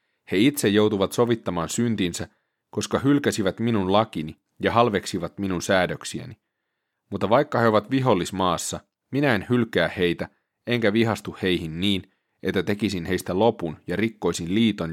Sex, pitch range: male, 90-115 Hz